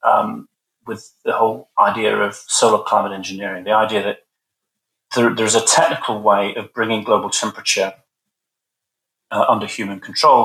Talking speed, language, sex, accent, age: 140 wpm, English, male, British, 40-59